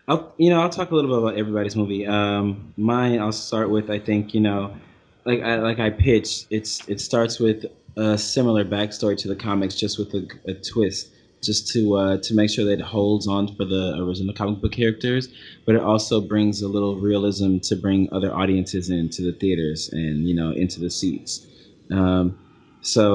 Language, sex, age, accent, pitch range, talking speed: English, male, 20-39, American, 95-110 Hz, 200 wpm